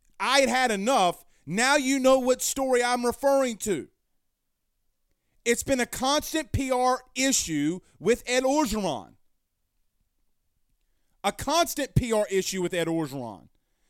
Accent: American